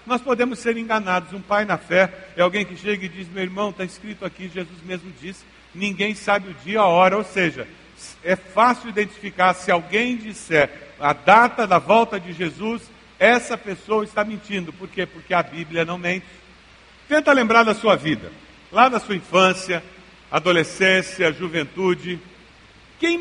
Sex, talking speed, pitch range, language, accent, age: male, 170 wpm, 180-230 Hz, Portuguese, Brazilian, 60-79